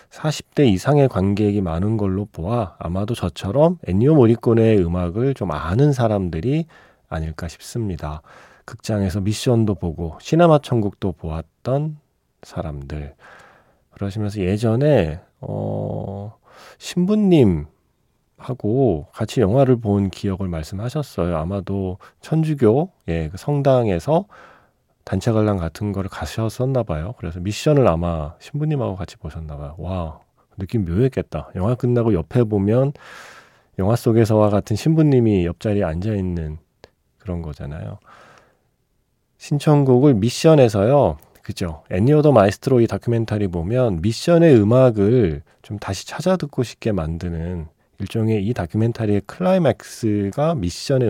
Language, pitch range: Korean, 90-125 Hz